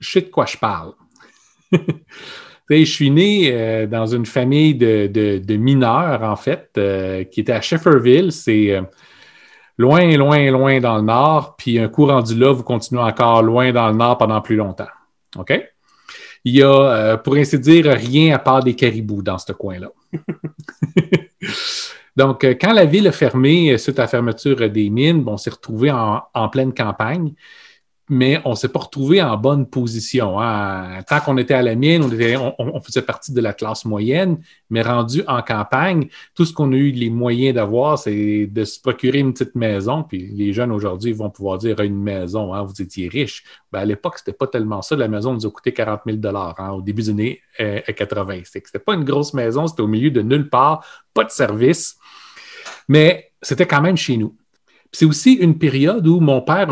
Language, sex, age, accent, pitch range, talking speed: French, male, 30-49, Canadian, 110-150 Hz, 200 wpm